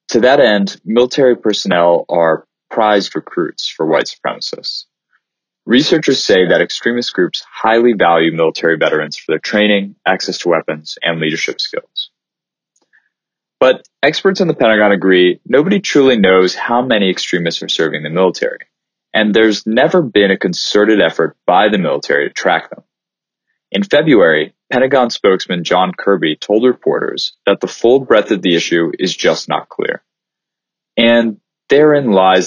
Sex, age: male, 20-39